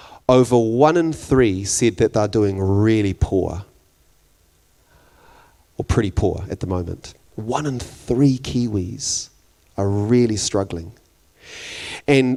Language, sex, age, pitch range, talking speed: English, male, 30-49, 105-150 Hz, 115 wpm